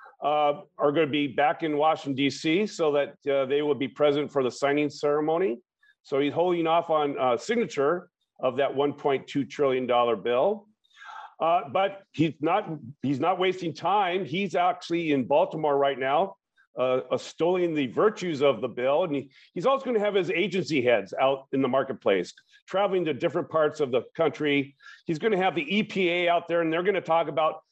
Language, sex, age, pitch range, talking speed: English, male, 50-69, 145-180 Hz, 195 wpm